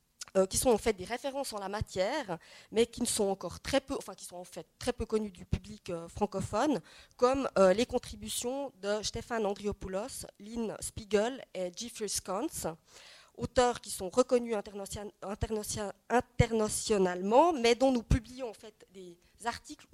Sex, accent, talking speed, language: female, French, 160 wpm, French